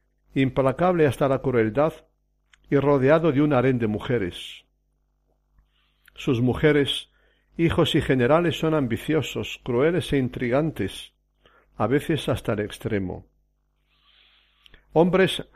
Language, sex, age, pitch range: Spanish, male, 60-79, 115-155 Hz